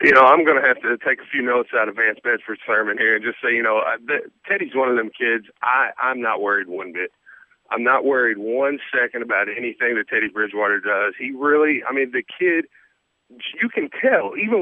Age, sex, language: 40-59, male, English